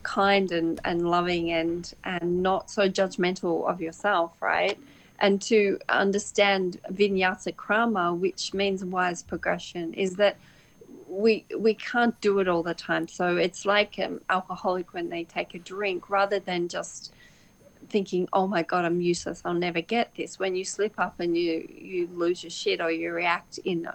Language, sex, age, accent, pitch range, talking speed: English, female, 30-49, Australian, 175-205 Hz, 170 wpm